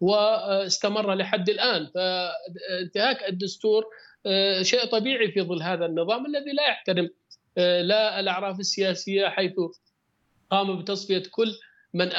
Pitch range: 170-205 Hz